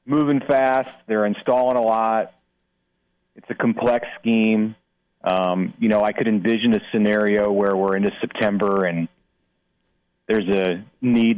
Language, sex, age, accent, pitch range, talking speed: English, male, 30-49, American, 90-110 Hz, 135 wpm